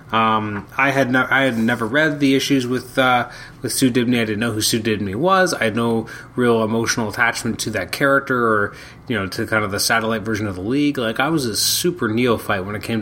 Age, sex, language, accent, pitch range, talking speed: 30-49, male, English, American, 110-135 Hz, 240 wpm